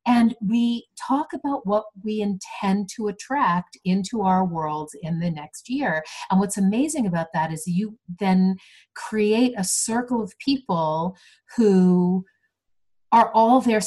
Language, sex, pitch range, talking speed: English, female, 175-230 Hz, 145 wpm